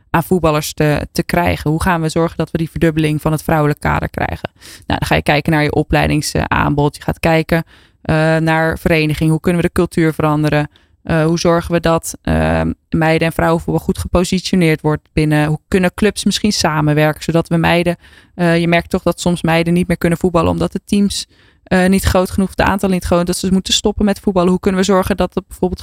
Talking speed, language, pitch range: 215 wpm, Dutch, 160-190 Hz